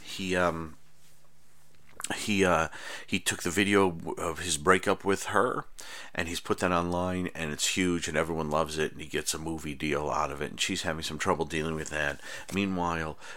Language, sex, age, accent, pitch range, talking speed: English, male, 50-69, American, 80-100 Hz, 195 wpm